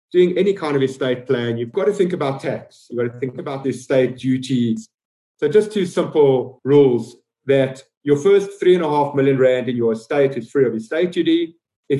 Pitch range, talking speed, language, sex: 120-150 Hz, 220 wpm, English, male